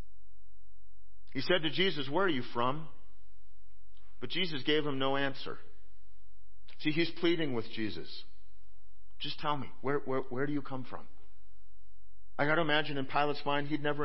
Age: 50-69